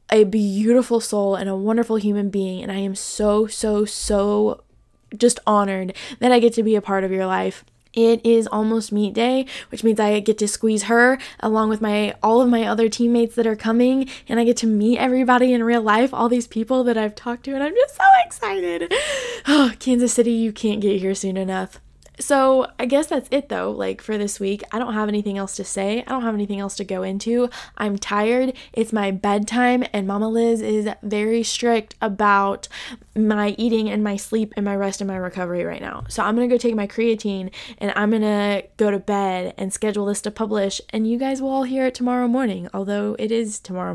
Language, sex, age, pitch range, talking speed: English, female, 10-29, 205-245 Hz, 220 wpm